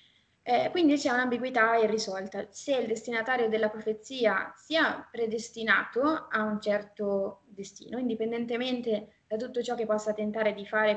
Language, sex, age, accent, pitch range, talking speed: Italian, female, 20-39, native, 210-245 Hz, 135 wpm